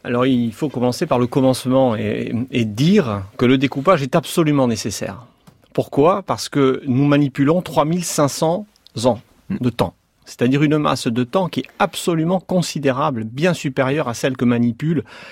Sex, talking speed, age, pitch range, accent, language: male, 155 wpm, 40-59, 125-160 Hz, French, French